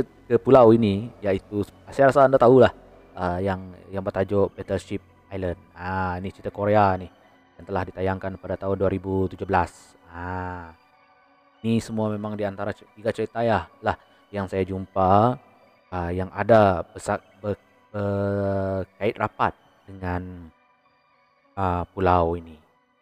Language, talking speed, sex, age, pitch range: Malay, 135 wpm, male, 20-39, 90-105 Hz